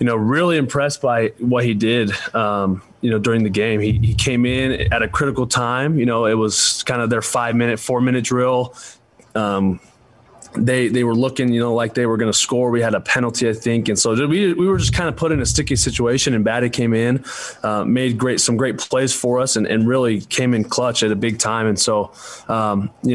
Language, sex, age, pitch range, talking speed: English, male, 20-39, 105-125 Hz, 235 wpm